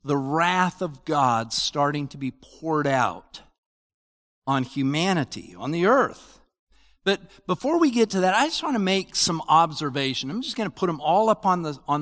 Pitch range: 155-225 Hz